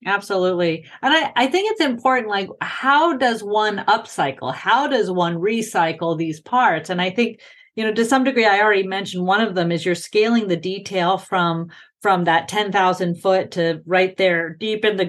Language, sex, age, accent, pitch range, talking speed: English, female, 40-59, American, 185-235 Hz, 190 wpm